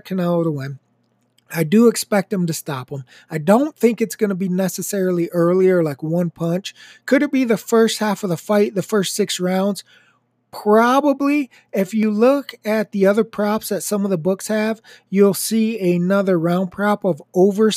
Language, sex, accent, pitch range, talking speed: English, male, American, 180-220 Hz, 190 wpm